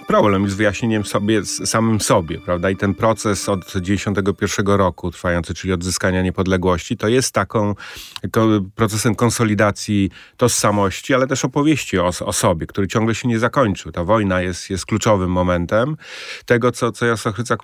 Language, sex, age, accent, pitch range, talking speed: Polish, male, 30-49, native, 95-115 Hz, 160 wpm